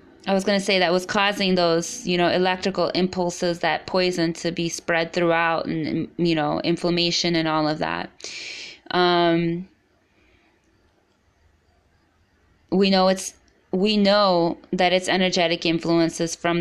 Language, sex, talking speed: English, female, 135 wpm